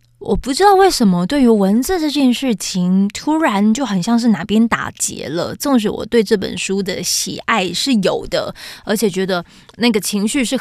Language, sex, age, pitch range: Chinese, female, 20-39, 185-230 Hz